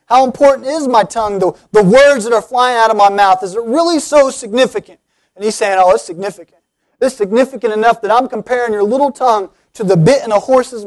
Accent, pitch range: American, 200-260 Hz